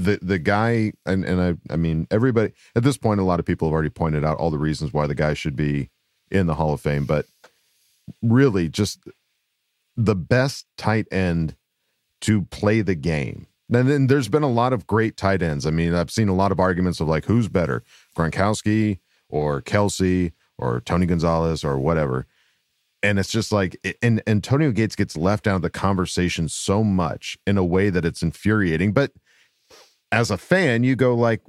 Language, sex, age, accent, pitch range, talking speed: English, male, 40-59, American, 85-110 Hz, 195 wpm